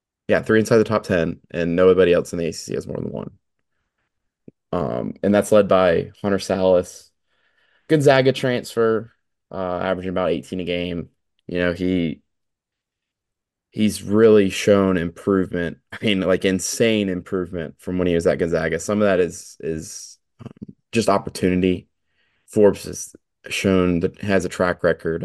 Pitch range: 85-100 Hz